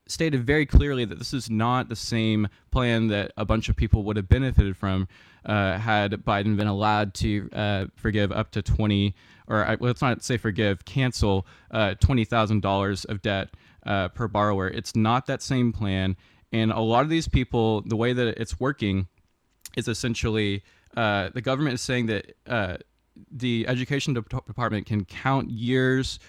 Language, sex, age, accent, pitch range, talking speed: English, male, 20-39, American, 100-120 Hz, 165 wpm